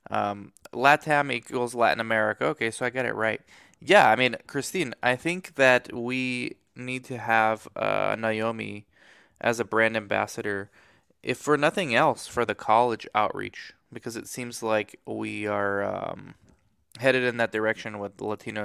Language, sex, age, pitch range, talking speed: English, male, 20-39, 110-130 Hz, 160 wpm